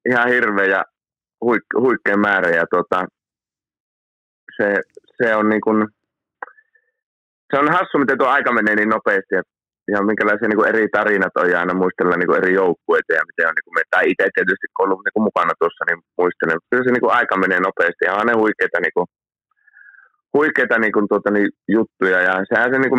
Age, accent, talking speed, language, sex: 20-39, native, 170 wpm, Finnish, male